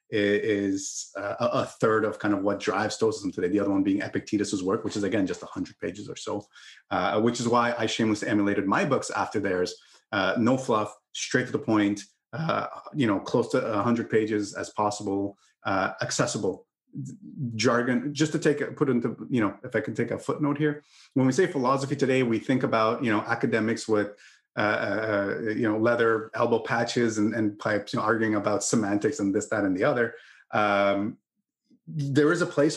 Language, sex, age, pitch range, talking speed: English, male, 30-49, 105-140 Hz, 200 wpm